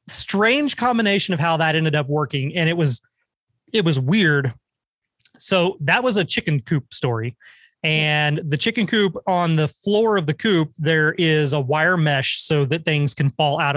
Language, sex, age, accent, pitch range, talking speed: English, male, 30-49, American, 145-175 Hz, 185 wpm